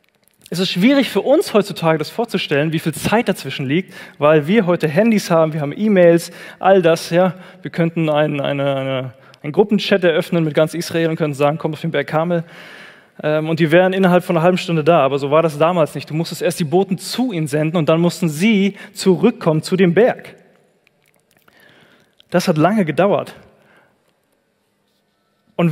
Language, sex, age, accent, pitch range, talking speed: German, male, 20-39, German, 155-195 Hz, 185 wpm